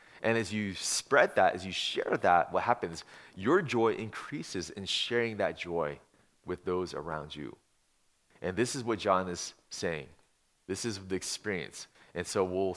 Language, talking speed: English, 170 wpm